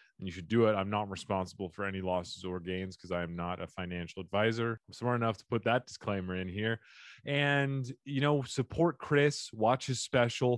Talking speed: 210 wpm